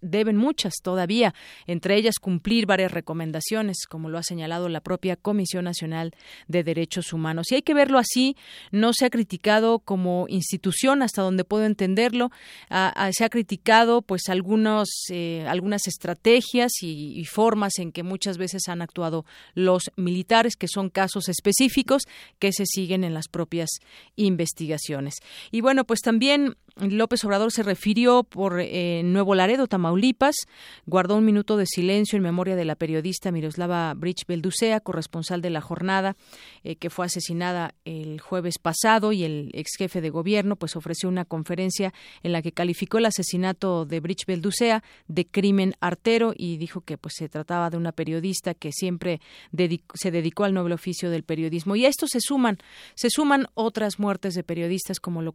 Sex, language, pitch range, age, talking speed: female, Spanish, 170-215 Hz, 40-59, 170 wpm